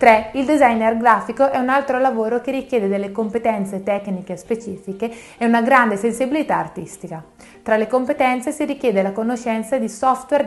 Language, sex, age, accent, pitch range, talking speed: Italian, female, 30-49, native, 195-255 Hz, 160 wpm